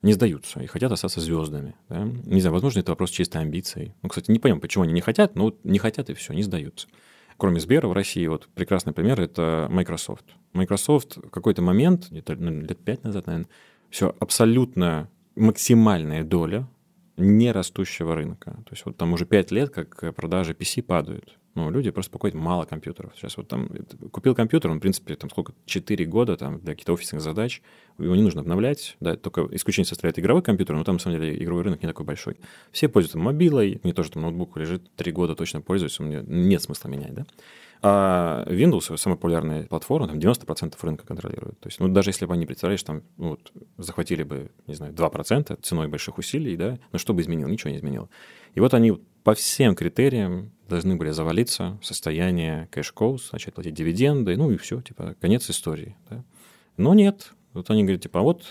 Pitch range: 85-110 Hz